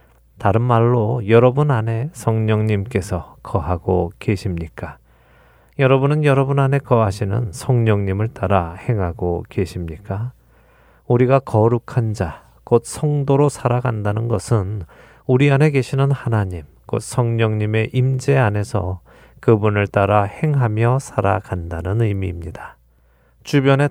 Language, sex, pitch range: Korean, male, 95-130 Hz